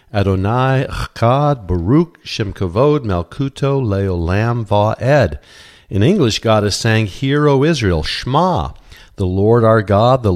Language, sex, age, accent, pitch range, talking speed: English, male, 50-69, American, 95-125 Hz, 125 wpm